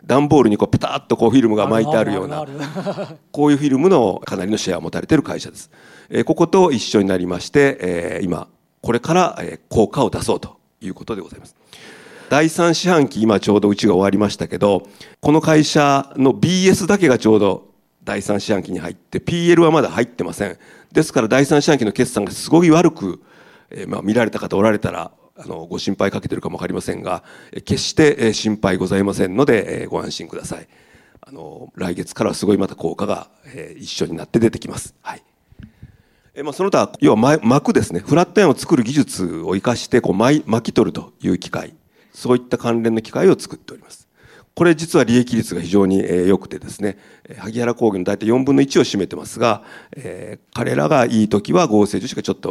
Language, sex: Japanese, male